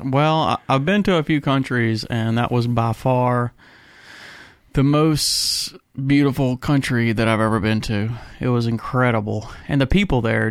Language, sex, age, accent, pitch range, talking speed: English, male, 30-49, American, 115-135 Hz, 160 wpm